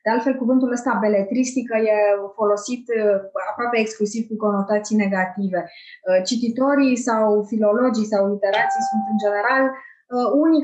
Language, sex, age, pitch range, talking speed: Romanian, female, 20-39, 215-285 Hz, 120 wpm